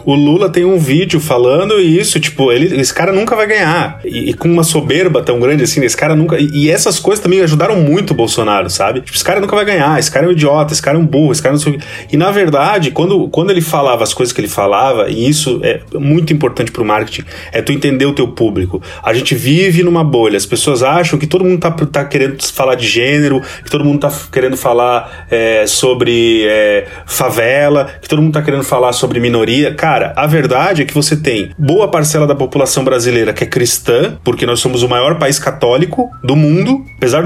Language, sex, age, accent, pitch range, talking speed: Portuguese, male, 30-49, Brazilian, 130-170 Hz, 225 wpm